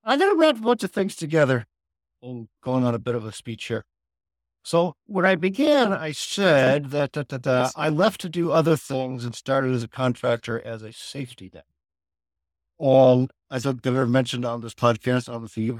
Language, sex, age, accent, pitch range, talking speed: English, male, 60-79, American, 100-135 Hz, 205 wpm